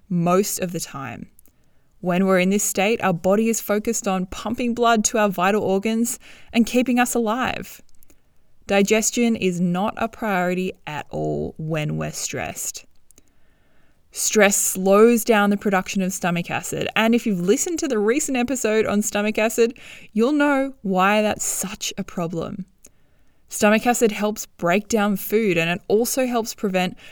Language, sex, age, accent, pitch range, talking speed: English, female, 20-39, Australian, 180-230 Hz, 155 wpm